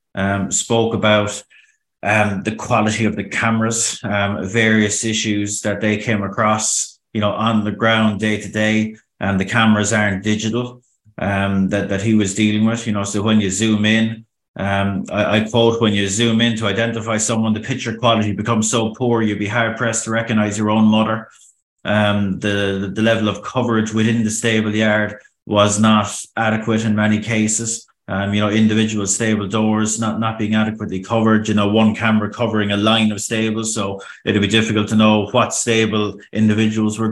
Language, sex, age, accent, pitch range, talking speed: English, male, 30-49, Irish, 105-110 Hz, 185 wpm